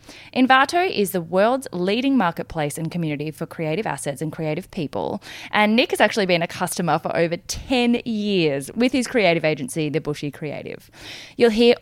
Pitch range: 160-235 Hz